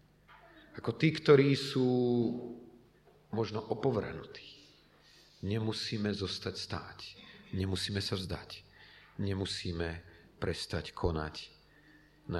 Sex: male